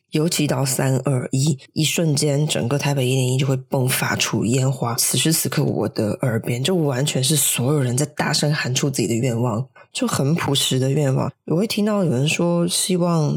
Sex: female